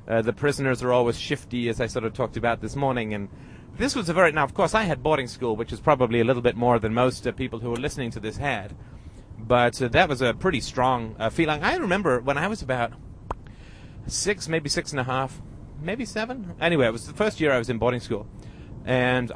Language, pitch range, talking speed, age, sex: English, 115-135 Hz, 240 wpm, 30-49, male